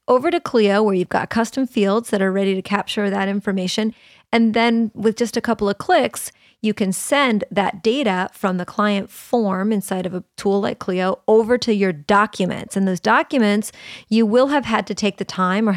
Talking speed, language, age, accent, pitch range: 205 wpm, English, 30-49, American, 195-240 Hz